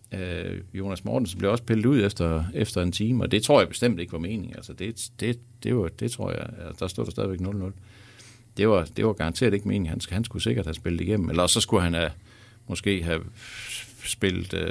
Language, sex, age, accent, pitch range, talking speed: Danish, male, 60-79, native, 90-115 Hz, 210 wpm